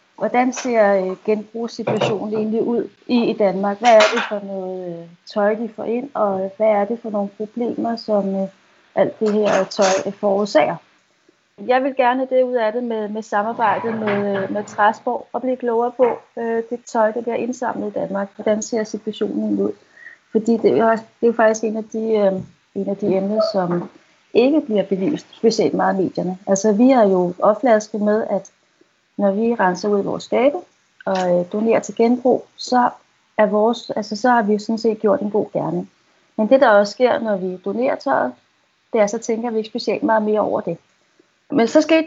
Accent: native